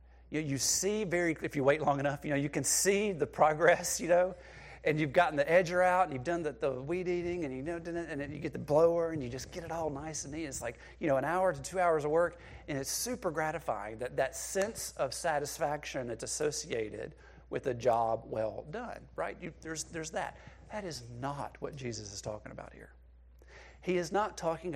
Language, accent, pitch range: English, American, 105-170 Hz